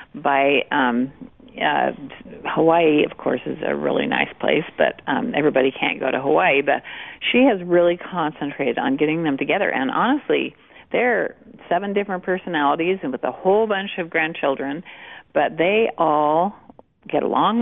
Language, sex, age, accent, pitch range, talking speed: English, female, 50-69, American, 155-220 Hz, 155 wpm